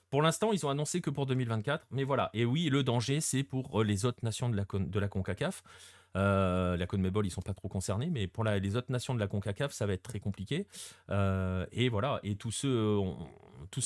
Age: 30-49